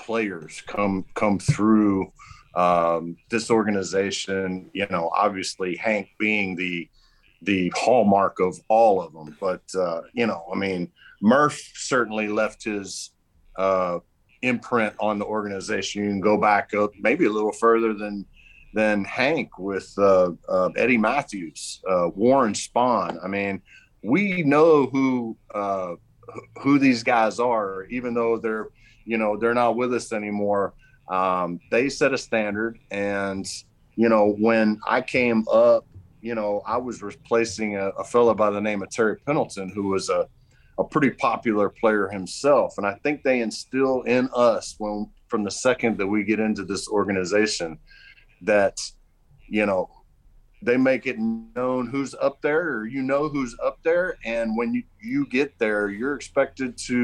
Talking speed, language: 155 wpm, English